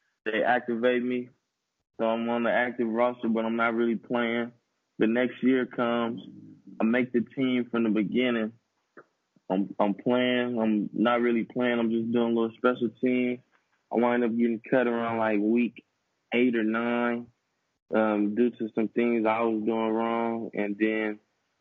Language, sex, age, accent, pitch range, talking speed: English, male, 20-39, American, 110-125 Hz, 170 wpm